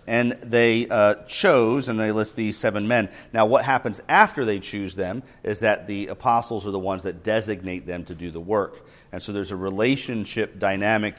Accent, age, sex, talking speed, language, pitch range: American, 40-59, male, 200 wpm, English, 95-110 Hz